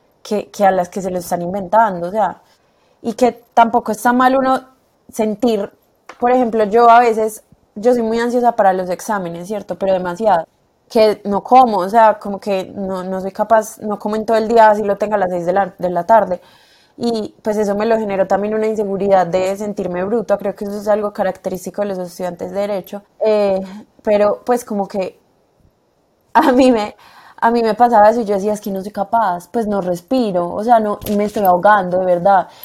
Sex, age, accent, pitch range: female, 20-39, Colombian, 190-225 Hz